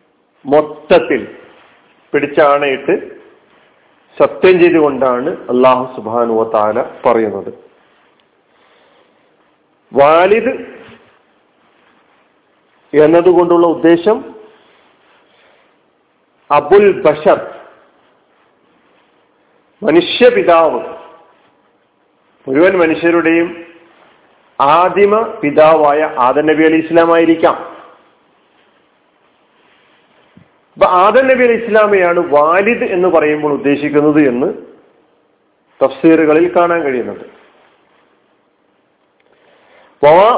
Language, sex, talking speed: Malayalam, male, 55 wpm